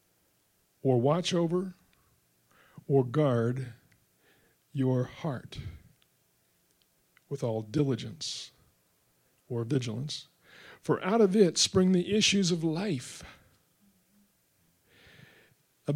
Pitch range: 125-180 Hz